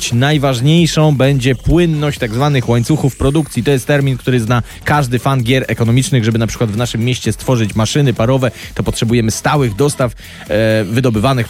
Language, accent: Polish, native